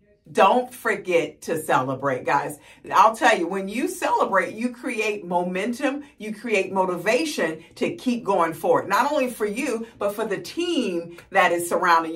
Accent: American